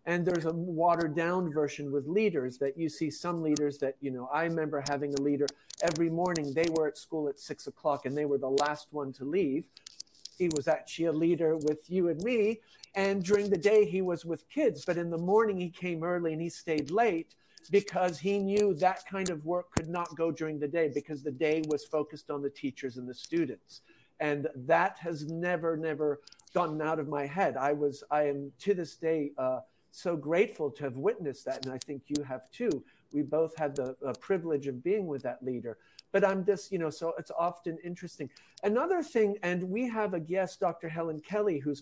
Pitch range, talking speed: 145-175 Hz, 215 wpm